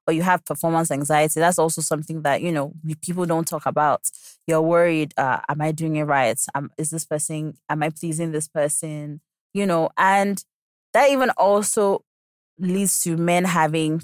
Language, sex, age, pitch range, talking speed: English, female, 20-39, 150-185 Hz, 180 wpm